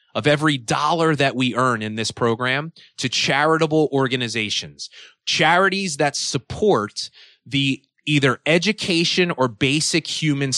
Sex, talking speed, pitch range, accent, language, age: male, 120 wpm, 130-185 Hz, American, English, 30-49